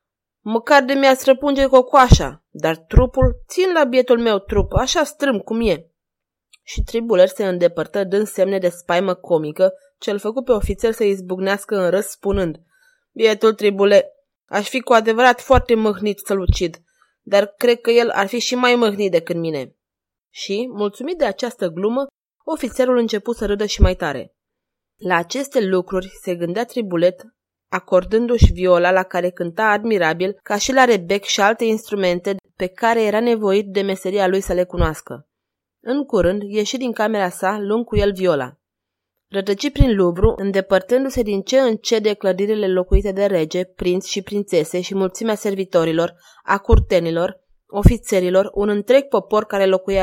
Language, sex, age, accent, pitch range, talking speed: Romanian, female, 20-39, native, 185-235 Hz, 160 wpm